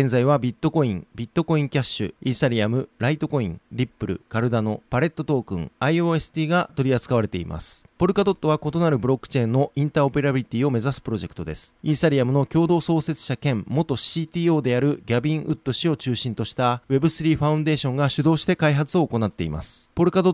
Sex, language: male, Japanese